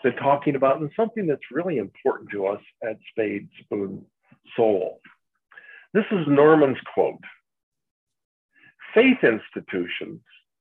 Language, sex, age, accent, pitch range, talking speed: English, male, 50-69, American, 135-200 Hz, 115 wpm